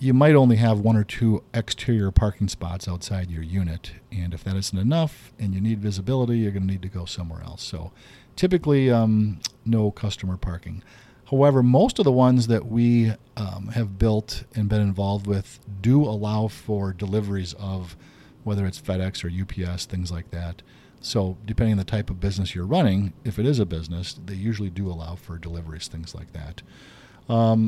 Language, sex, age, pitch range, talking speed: English, male, 50-69, 95-120 Hz, 190 wpm